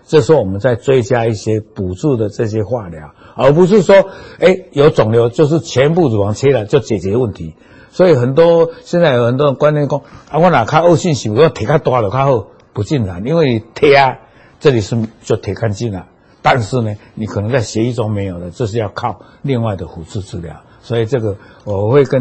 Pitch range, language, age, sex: 105-145 Hz, Chinese, 60-79, male